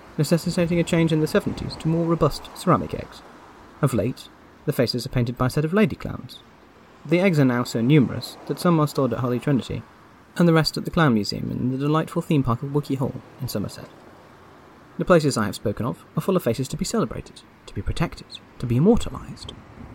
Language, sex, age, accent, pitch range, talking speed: English, male, 30-49, British, 100-145 Hz, 215 wpm